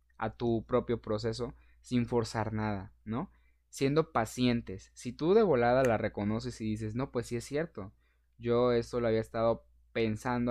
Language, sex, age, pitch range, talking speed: Spanish, male, 20-39, 105-125 Hz, 165 wpm